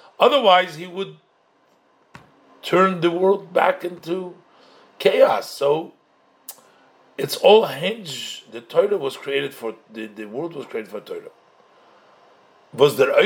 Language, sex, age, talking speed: English, male, 50-69, 115 wpm